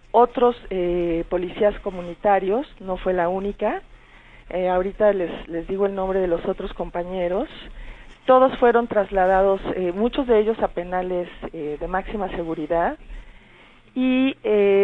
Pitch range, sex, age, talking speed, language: 170-205 Hz, female, 40-59, 140 wpm, Spanish